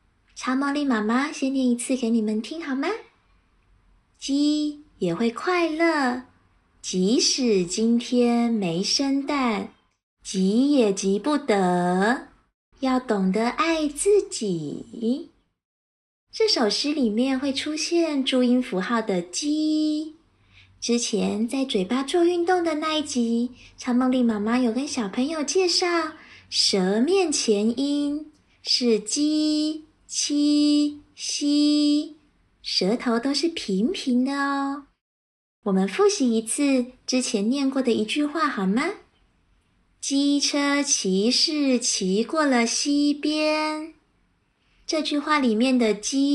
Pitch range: 220-295 Hz